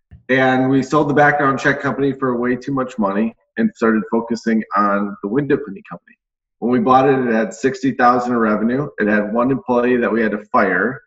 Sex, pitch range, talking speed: male, 110-135 Hz, 210 wpm